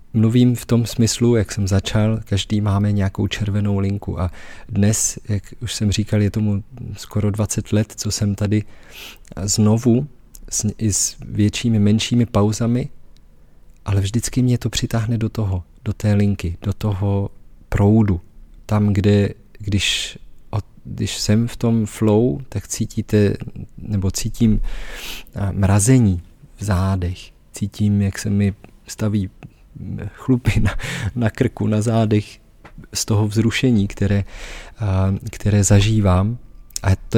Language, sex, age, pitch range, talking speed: Czech, male, 40-59, 95-110 Hz, 130 wpm